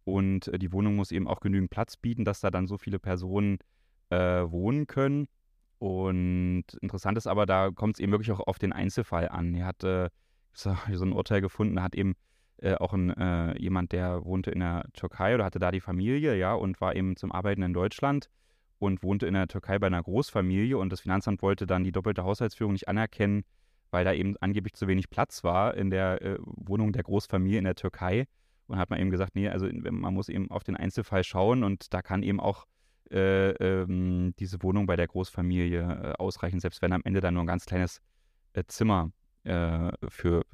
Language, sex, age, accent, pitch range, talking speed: German, male, 20-39, German, 90-105 Hz, 210 wpm